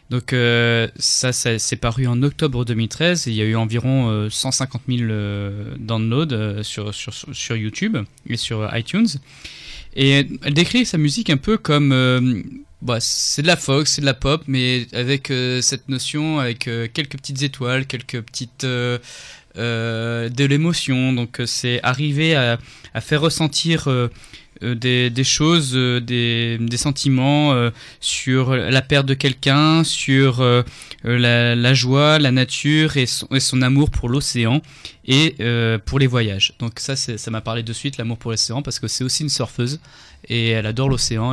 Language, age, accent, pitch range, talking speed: French, 20-39, French, 115-140 Hz, 175 wpm